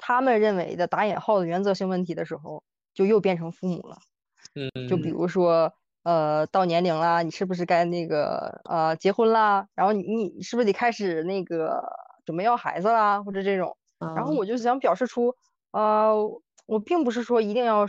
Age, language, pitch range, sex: 20-39, Chinese, 170-215 Hz, female